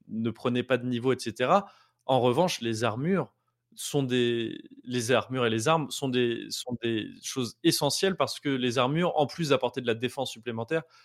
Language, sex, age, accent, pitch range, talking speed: French, male, 20-39, French, 125-175 Hz, 185 wpm